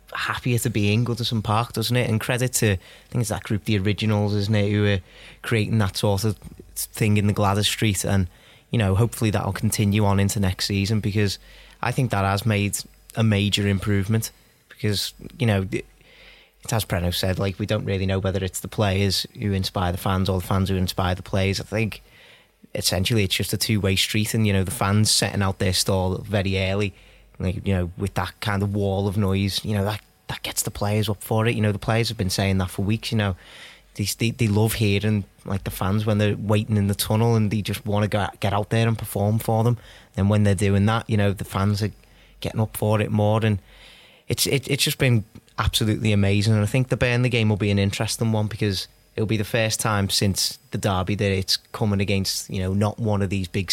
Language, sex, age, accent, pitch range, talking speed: English, male, 20-39, British, 100-110 Hz, 235 wpm